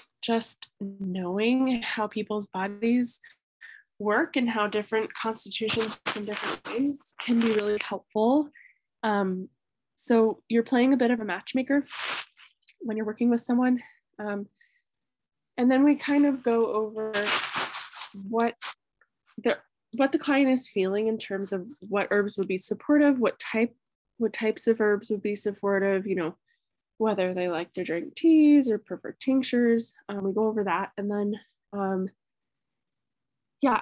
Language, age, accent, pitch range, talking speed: English, 10-29, American, 205-260 Hz, 145 wpm